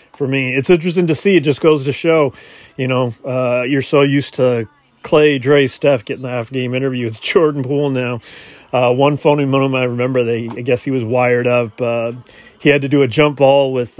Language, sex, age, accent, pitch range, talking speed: English, male, 30-49, American, 125-160 Hz, 225 wpm